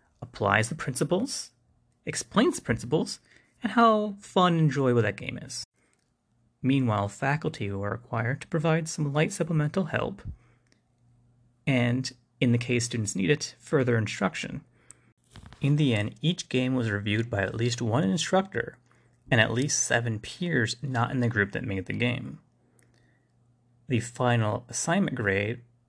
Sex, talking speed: male, 140 wpm